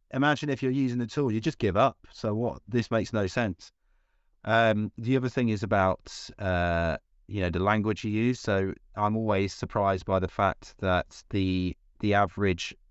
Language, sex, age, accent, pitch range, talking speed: English, male, 30-49, British, 95-110 Hz, 185 wpm